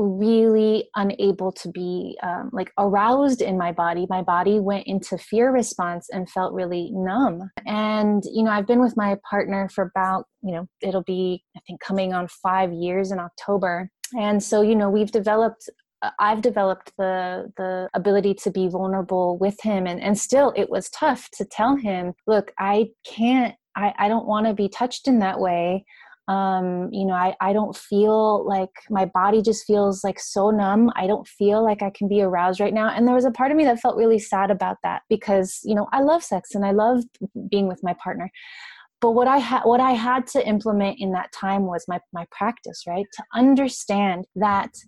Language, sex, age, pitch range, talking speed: English, female, 20-39, 185-230 Hz, 200 wpm